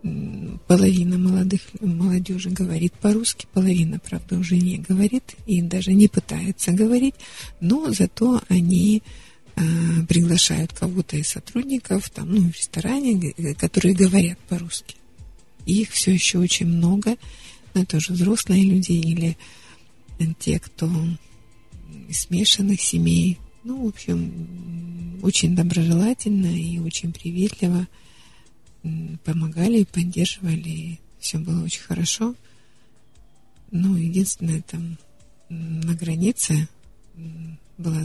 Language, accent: Russian, native